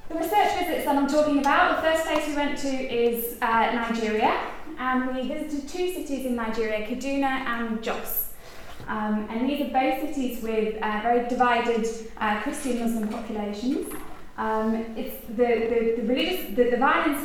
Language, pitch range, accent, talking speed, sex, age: English, 225-275 Hz, British, 170 wpm, female, 10-29